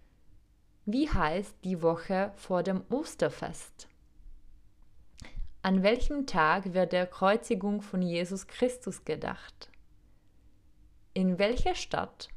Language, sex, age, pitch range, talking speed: Czech, female, 20-39, 185-240 Hz, 95 wpm